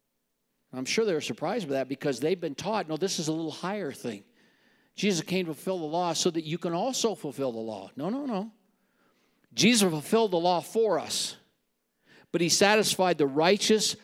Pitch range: 130-190 Hz